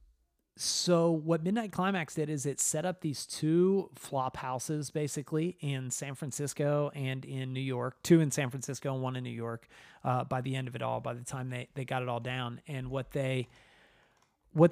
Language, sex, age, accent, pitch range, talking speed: English, male, 30-49, American, 125-150 Hz, 205 wpm